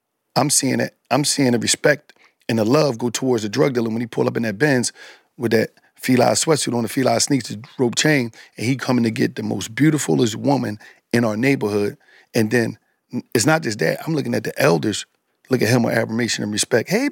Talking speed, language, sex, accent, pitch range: 230 wpm, English, male, American, 115-140 Hz